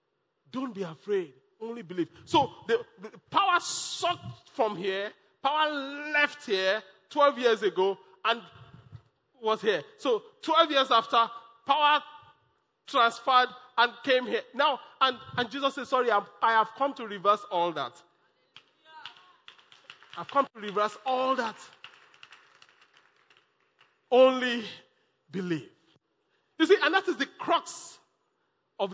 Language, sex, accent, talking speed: English, male, Nigerian, 120 wpm